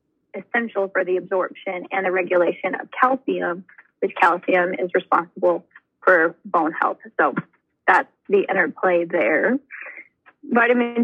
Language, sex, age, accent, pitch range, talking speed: English, female, 20-39, American, 190-240 Hz, 120 wpm